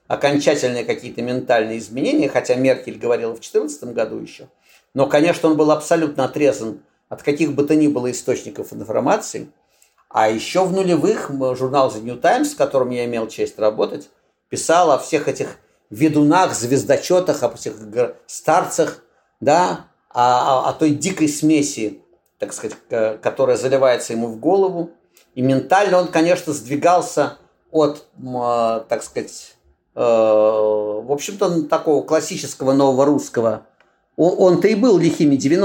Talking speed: 135 wpm